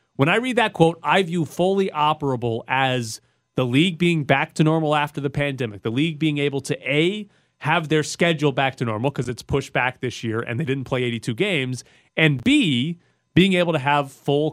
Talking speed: 205 wpm